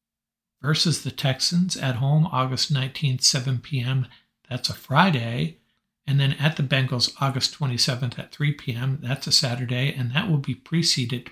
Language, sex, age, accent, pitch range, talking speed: English, male, 60-79, American, 120-145 Hz, 160 wpm